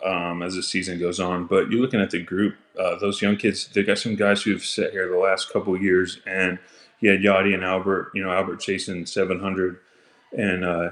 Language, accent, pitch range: English, American, 90-100 Hz